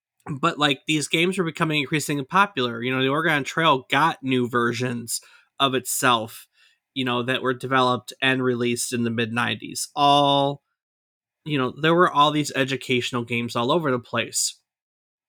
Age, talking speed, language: 20-39, 160 wpm, English